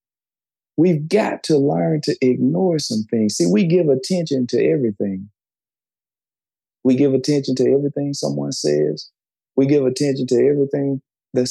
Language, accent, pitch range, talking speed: English, American, 110-160 Hz, 140 wpm